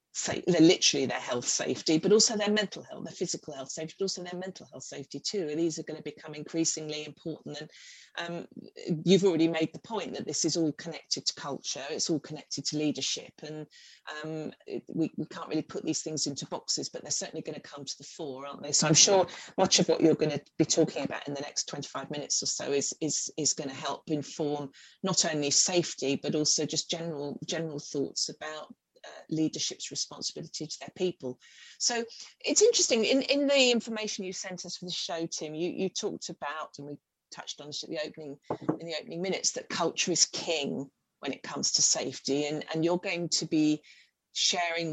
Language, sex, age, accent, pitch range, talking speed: English, female, 40-59, British, 150-185 Hz, 210 wpm